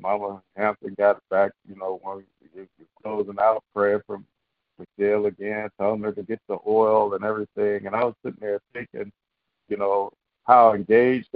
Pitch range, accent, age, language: 100-120 Hz, American, 50-69, English